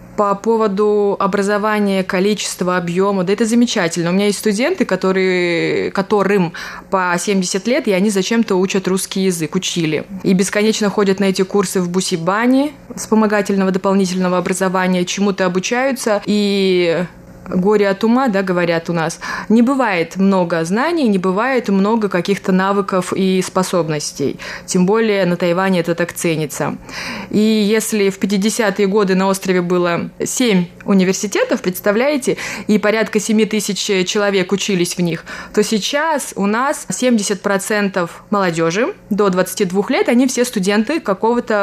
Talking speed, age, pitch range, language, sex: 135 wpm, 20-39, 185-215 Hz, Russian, female